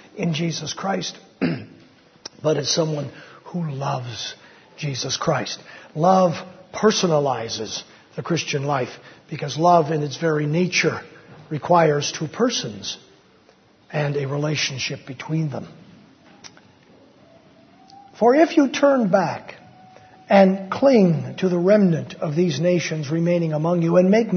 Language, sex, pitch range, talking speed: English, male, 155-210 Hz, 115 wpm